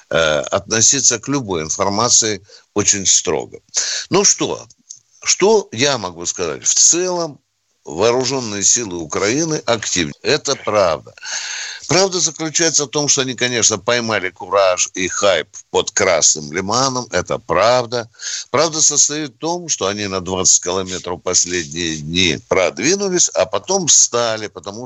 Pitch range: 105-155 Hz